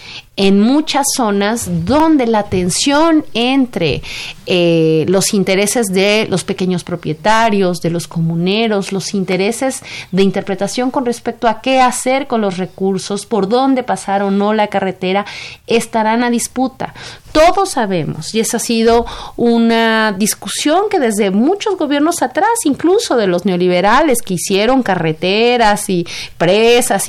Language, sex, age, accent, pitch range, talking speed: Spanish, female, 30-49, Mexican, 190-255 Hz, 135 wpm